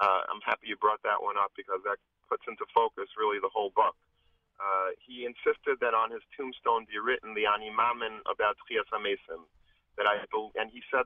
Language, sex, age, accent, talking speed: English, male, 40-59, American, 190 wpm